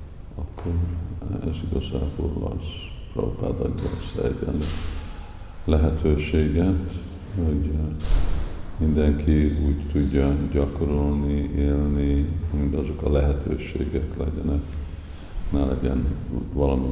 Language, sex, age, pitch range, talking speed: Hungarian, male, 50-69, 70-85 Hz, 75 wpm